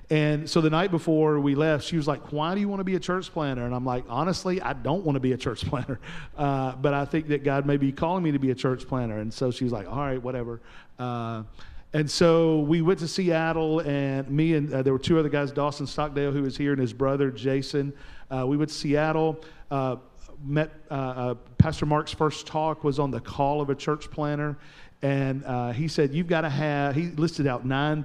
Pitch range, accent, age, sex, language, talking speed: 130-155 Hz, American, 40-59, male, English, 240 wpm